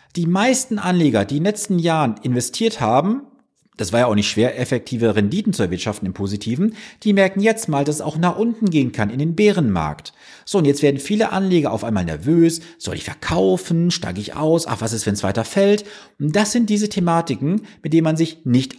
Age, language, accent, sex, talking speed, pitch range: 40-59, German, German, male, 215 wpm, 120-190 Hz